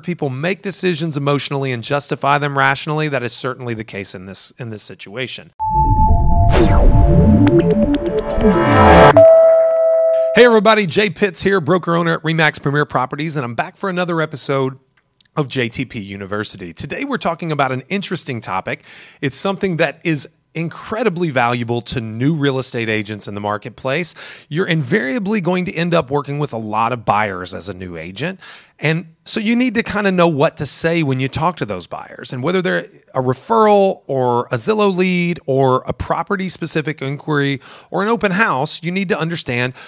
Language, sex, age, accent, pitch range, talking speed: English, male, 30-49, American, 125-185 Hz, 170 wpm